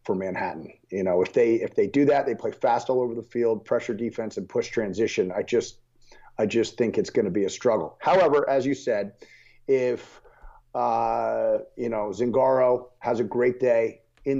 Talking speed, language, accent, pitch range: 195 wpm, English, American, 120-145 Hz